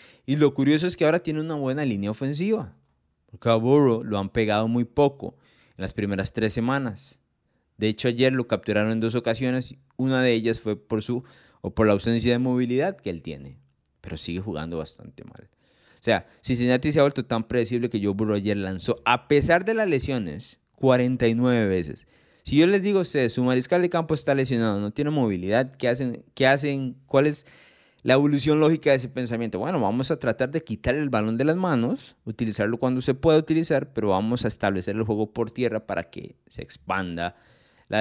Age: 20-39